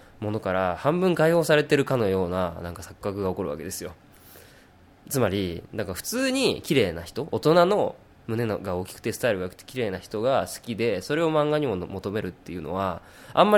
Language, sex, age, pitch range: Japanese, male, 20-39, 95-150 Hz